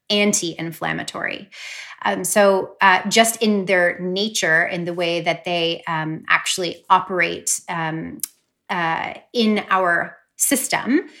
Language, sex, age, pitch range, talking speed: English, female, 30-49, 170-200 Hz, 115 wpm